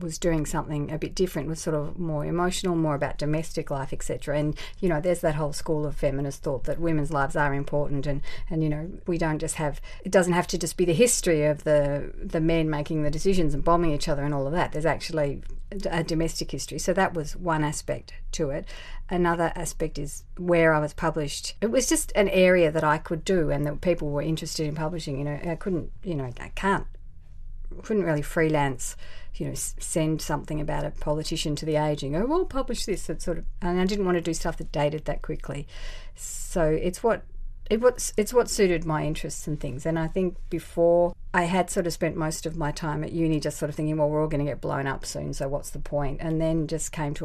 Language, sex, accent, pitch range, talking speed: English, female, Australian, 145-170 Hz, 235 wpm